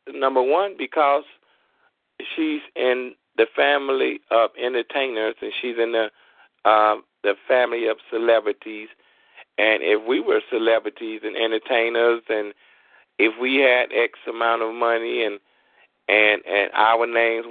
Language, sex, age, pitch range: English, male, 40-59, 105-130 Hz